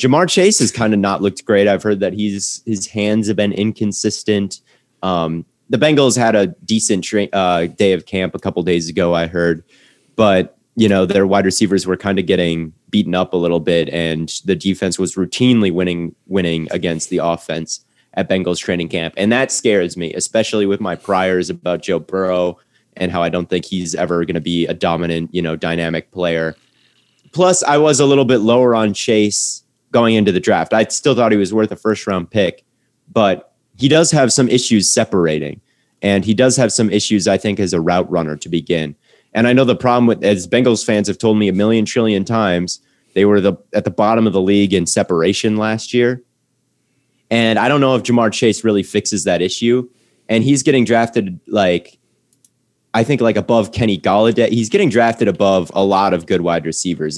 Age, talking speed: 30-49, 205 wpm